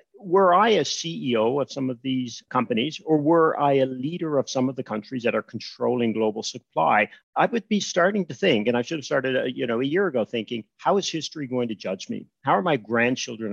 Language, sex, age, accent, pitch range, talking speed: English, male, 50-69, American, 115-155 Hz, 230 wpm